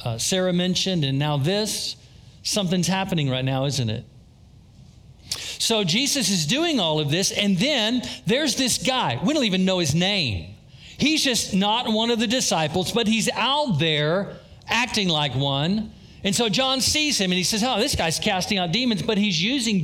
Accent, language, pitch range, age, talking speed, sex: American, English, 150-220 Hz, 50-69, 185 wpm, male